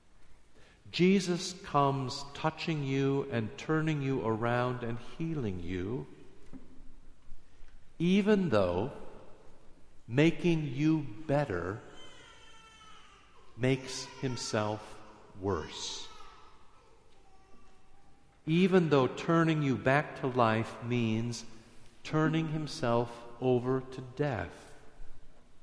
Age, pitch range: 50-69, 105-140 Hz